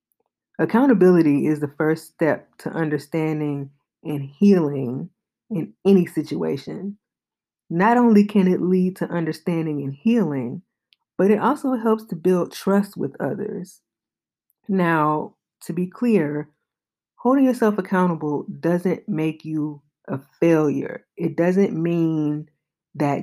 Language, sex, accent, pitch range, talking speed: English, female, American, 150-195 Hz, 120 wpm